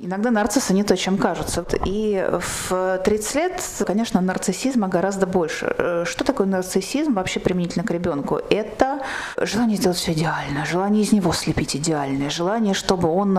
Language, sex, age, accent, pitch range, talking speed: Russian, female, 30-49, native, 170-220 Hz, 150 wpm